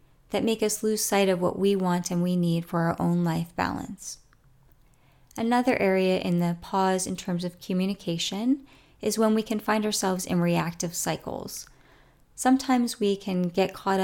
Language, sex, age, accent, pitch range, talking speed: English, female, 30-49, American, 170-195 Hz, 170 wpm